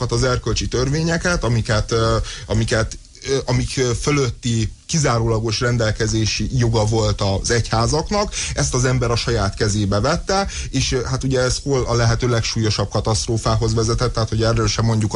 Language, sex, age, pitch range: Hungarian, male, 30-49, 110-130 Hz